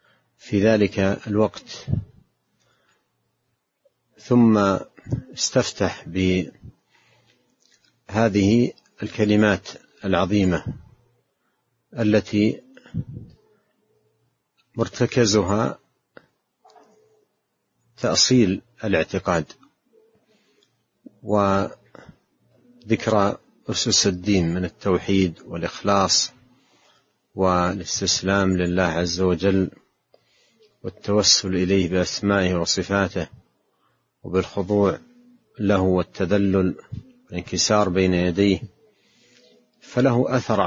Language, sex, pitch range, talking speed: Arabic, male, 95-120 Hz, 50 wpm